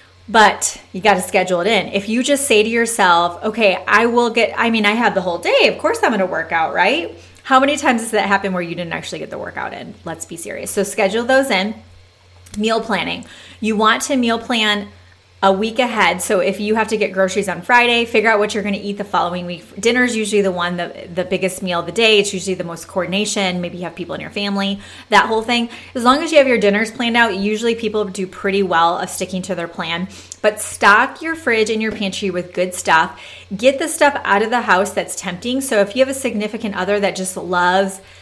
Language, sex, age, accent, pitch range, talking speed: English, female, 20-39, American, 180-225 Hz, 245 wpm